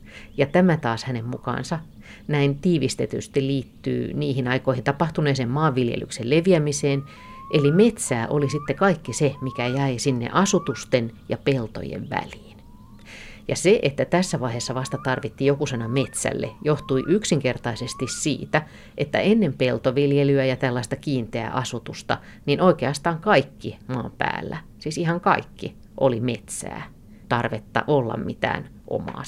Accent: native